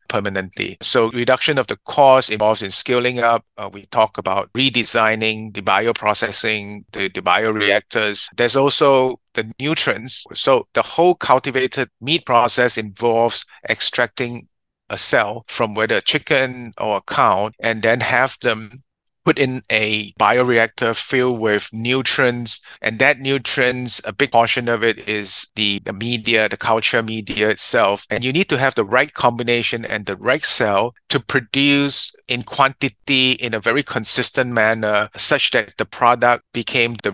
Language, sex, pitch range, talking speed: English, male, 110-130 Hz, 155 wpm